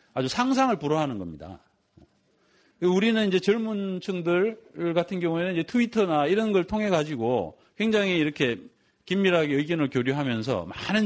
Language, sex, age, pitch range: Korean, male, 40-59, 135-205 Hz